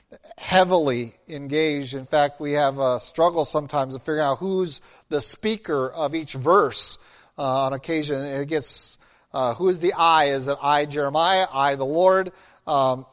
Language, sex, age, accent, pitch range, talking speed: English, male, 40-59, American, 140-165 Hz, 165 wpm